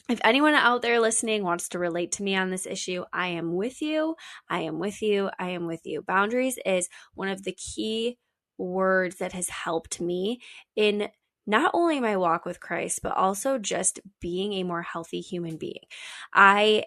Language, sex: English, female